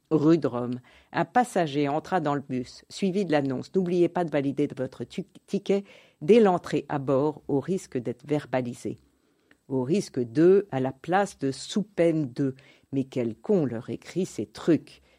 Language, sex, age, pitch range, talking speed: French, female, 50-69, 130-160 Hz, 170 wpm